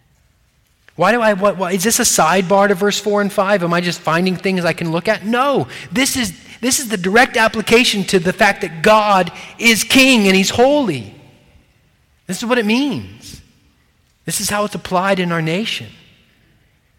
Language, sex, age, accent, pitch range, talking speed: English, male, 30-49, American, 125-200 Hz, 180 wpm